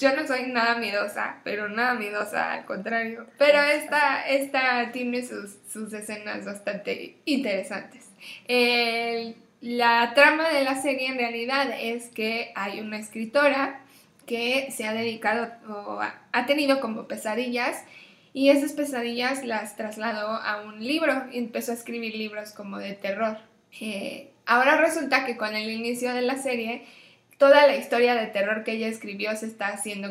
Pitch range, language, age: 215-260 Hz, Spanish, 10-29